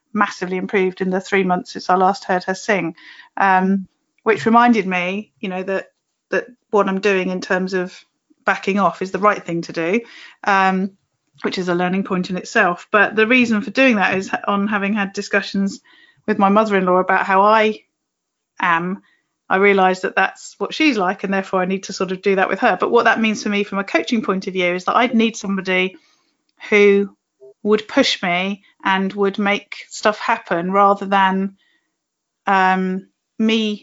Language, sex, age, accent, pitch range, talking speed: English, female, 30-49, British, 190-220 Hz, 190 wpm